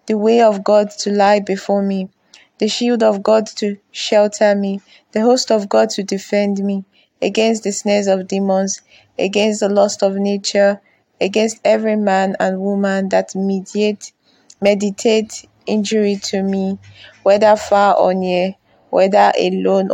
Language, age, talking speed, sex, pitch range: English, 20-39, 145 wpm, female, 195-210 Hz